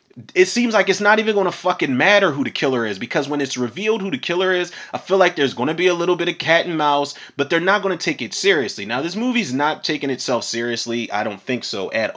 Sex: male